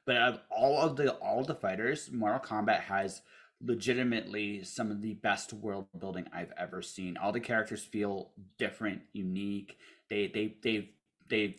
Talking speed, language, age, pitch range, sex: 160 wpm, English, 30-49, 105-125 Hz, male